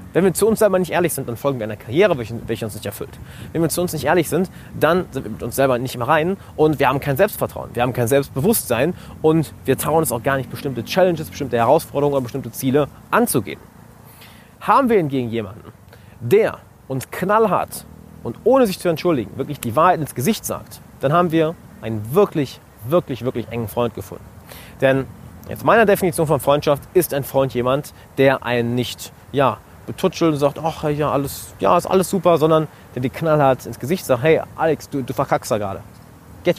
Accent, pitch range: German, 115-155 Hz